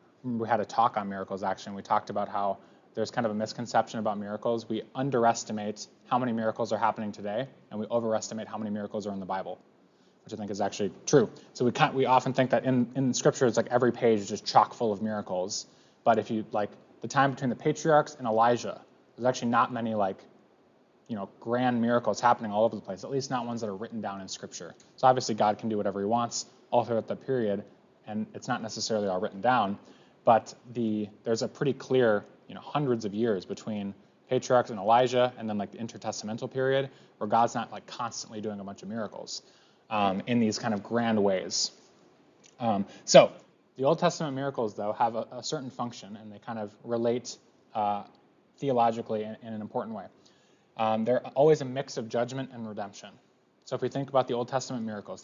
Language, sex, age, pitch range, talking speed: English, male, 20-39, 105-125 Hz, 210 wpm